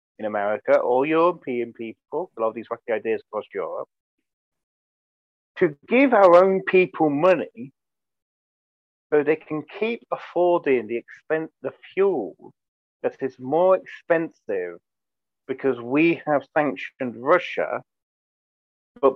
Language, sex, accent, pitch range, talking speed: English, male, British, 125-205 Hz, 115 wpm